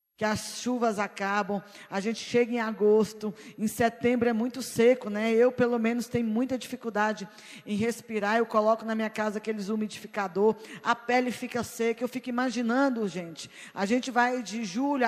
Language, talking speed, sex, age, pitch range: Portuguese, 170 wpm, female, 20-39, 215-255 Hz